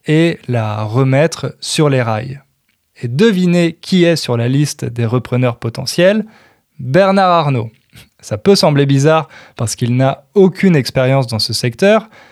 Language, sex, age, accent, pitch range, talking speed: French, male, 20-39, French, 120-170 Hz, 145 wpm